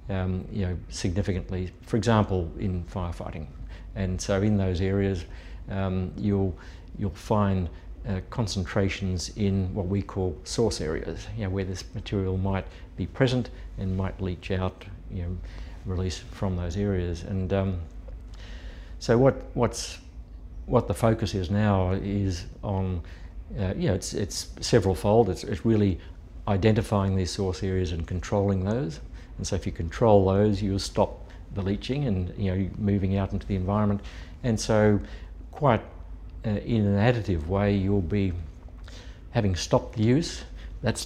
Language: English